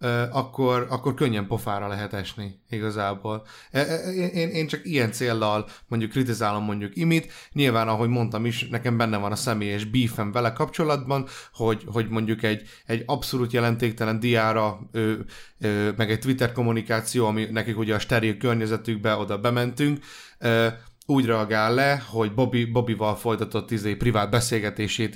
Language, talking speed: Hungarian, 140 wpm